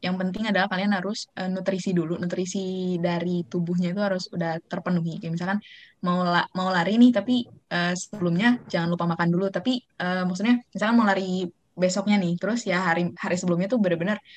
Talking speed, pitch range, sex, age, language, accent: 185 wpm, 175-205 Hz, female, 20-39, Indonesian, native